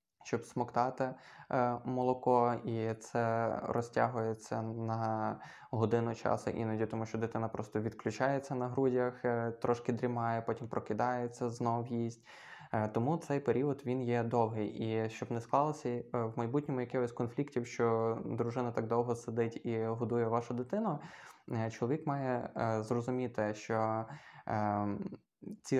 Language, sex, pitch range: Ukrainian, male, 115-125 Hz